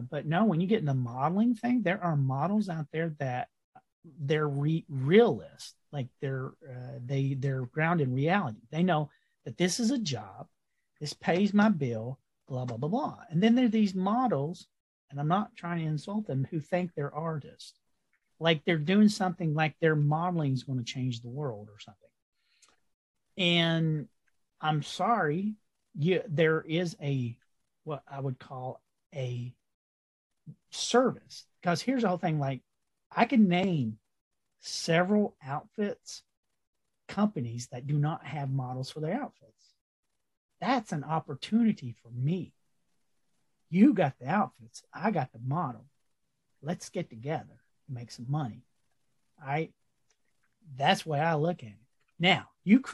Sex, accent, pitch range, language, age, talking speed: male, American, 130-180 Hz, English, 40-59, 150 wpm